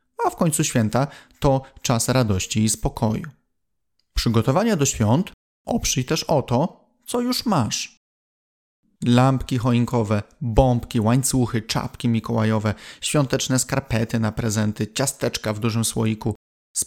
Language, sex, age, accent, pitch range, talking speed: Polish, male, 30-49, native, 115-155 Hz, 120 wpm